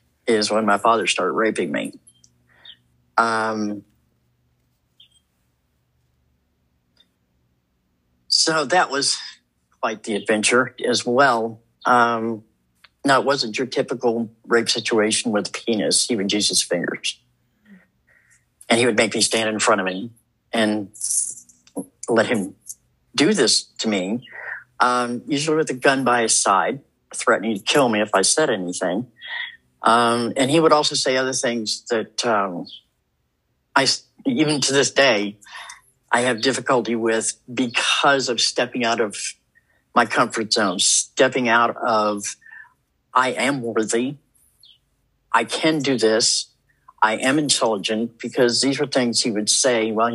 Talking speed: 135 wpm